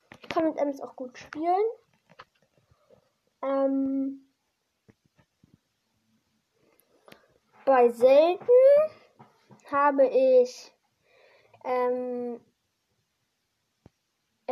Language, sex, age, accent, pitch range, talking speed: German, female, 10-29, German, 255-360 Hz, 55 wpm